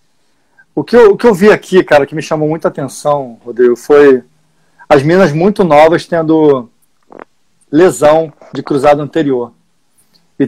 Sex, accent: male, Brazilian